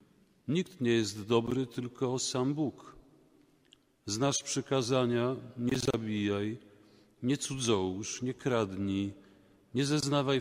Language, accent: Polish, native